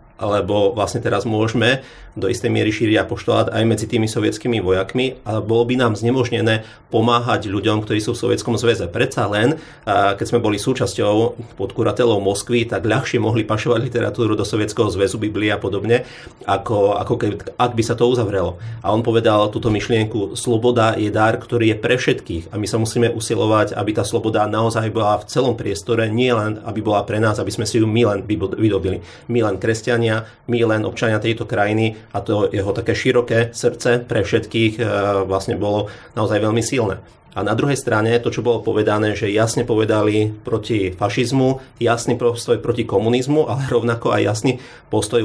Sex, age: male, 30-49